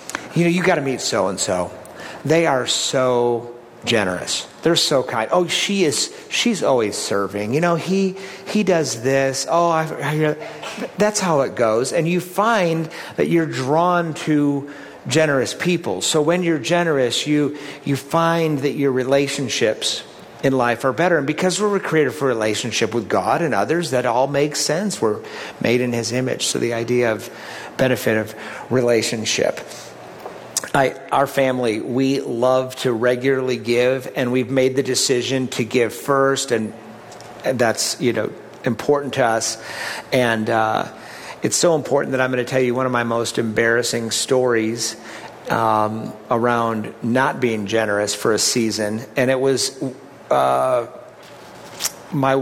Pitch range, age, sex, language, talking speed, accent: 115-155 Hz, 50-69, male, English, 155 wpm, American